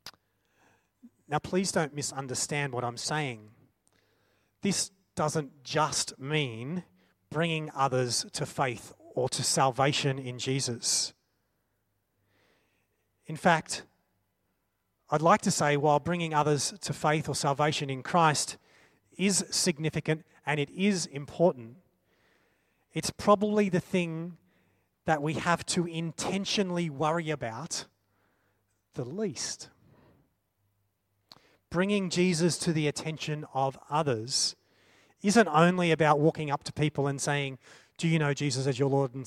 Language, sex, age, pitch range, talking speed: English, male, 30-49, 120-160 Hz, 120 wpm